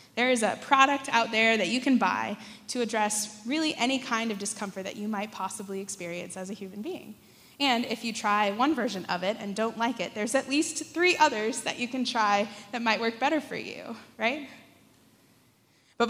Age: 20-39